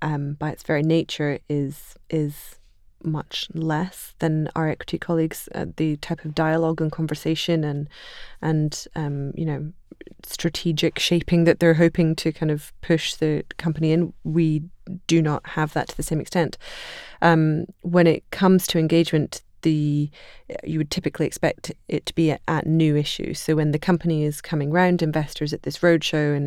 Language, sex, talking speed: English, female, 170 wpm